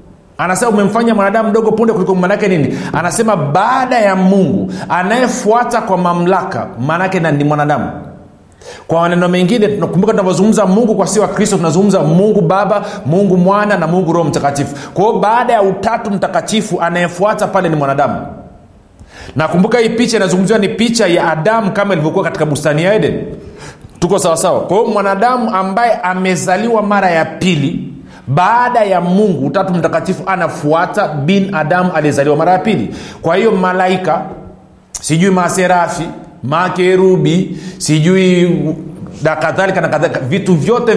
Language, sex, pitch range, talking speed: Swahili, male, 155-200 Hz, 135 wpm